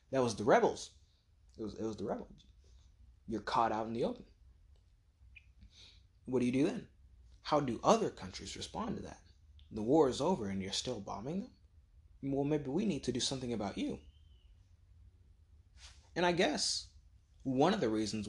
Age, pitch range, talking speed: 20-39, 85-130 Hz, 175 wpm